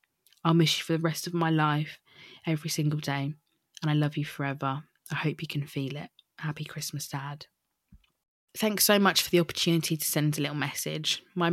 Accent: British